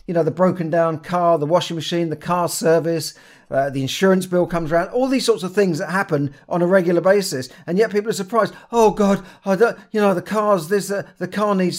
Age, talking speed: 40-59, 240 wpm